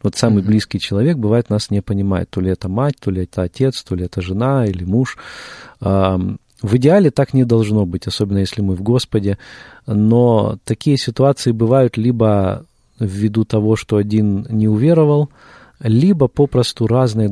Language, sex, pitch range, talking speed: Russian, male, 105-125 Hz, 165 wpm